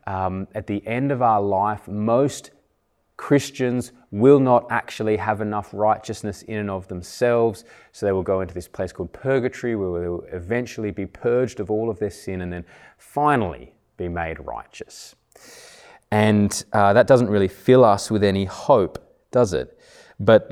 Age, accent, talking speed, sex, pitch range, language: 20-39, Australian, 170 wpm, male, 95-120 Hz, English